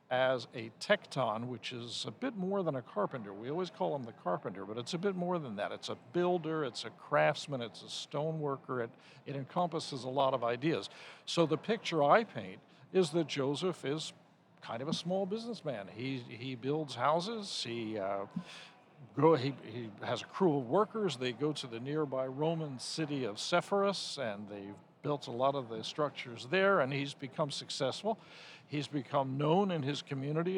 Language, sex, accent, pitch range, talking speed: English, male, American, 130-170 Hz, 190 wpm